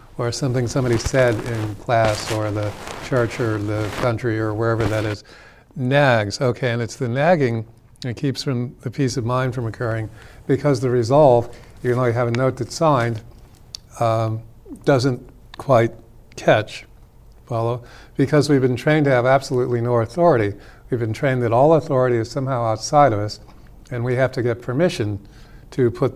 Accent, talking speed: American, 170 wpm